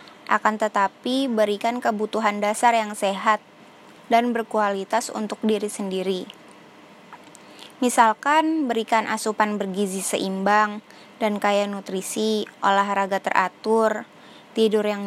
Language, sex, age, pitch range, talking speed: Indonesian, female, 10-29, 205-230 Hz, 95 wpm